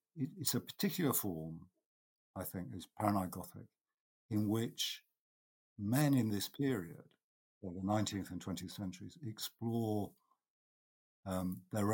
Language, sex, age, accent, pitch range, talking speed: English, male, 50-69, British, 90-115 Hz, 120 wpm